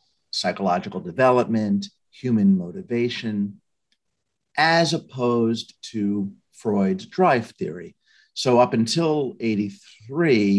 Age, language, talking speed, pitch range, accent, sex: 50-69, English, 80 wpm, 105-155 Hz, American, male